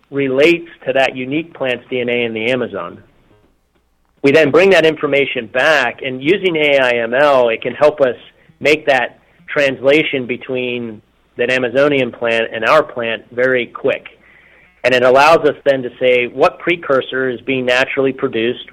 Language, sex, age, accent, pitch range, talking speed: English, male, 40-59, American, 120-145 Hz, 150 wpm